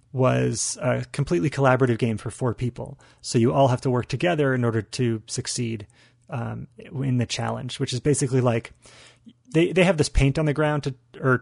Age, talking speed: 30-49, 190 wpm